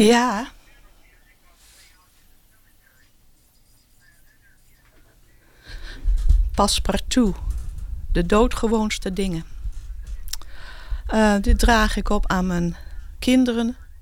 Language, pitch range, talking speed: English, 175-205 Hz, 55 wpm